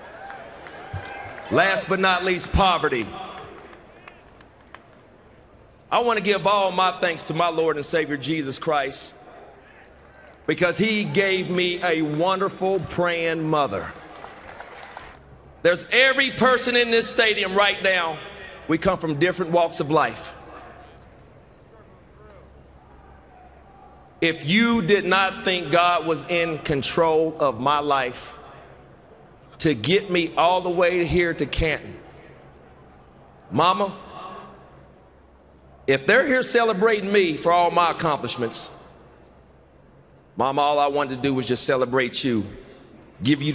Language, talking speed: English, 115 wpm